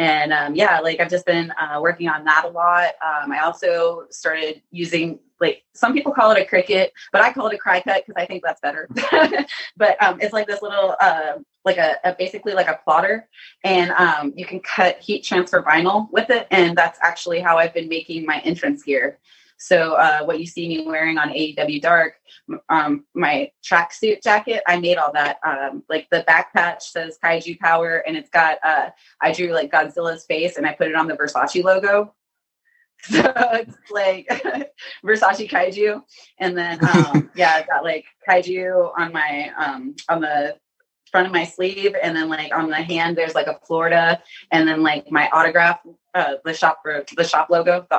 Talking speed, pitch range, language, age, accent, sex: 200 wpm, 160-210 Hz, English, 20-39, American, female